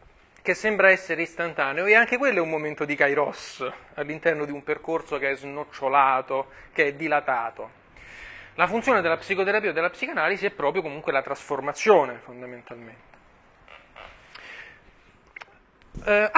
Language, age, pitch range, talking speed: Italian, 30-49, 150-200 Hz, 130 wpm